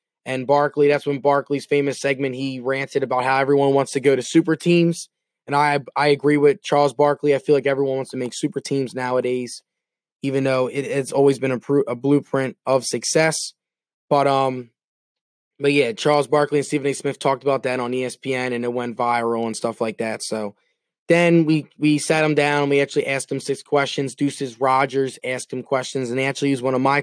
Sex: male